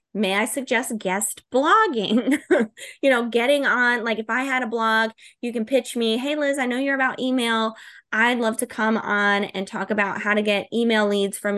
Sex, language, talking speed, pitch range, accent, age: female, English, 205 wpm, 210-260 Hz, American, 20-39